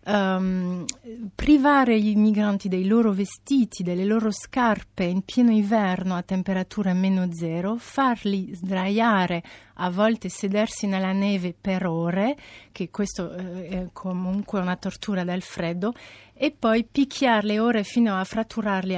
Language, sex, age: Italian, female, 30-49